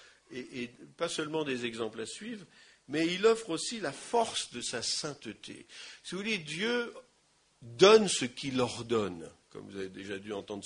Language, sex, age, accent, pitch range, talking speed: English, male, 50-69, French, 115-180 Hz, 175 wpm